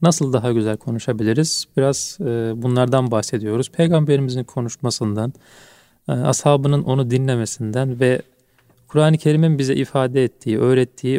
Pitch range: 120-150 Hz